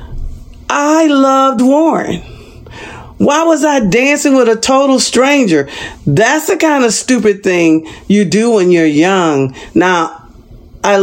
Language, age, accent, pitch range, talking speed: English, 50-69, American, 195-285 Hz, 130 wpm